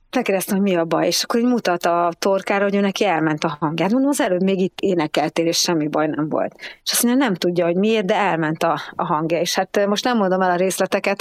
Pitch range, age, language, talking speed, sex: 170-195 Hz, 30-49, Hungarian, 255 wpm, female